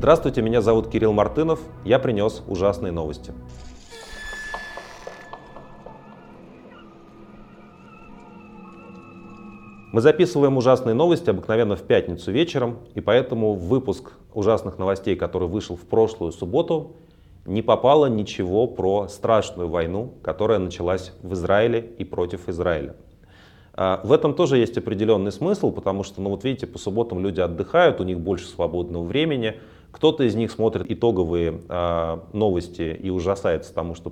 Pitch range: 85-115 Hz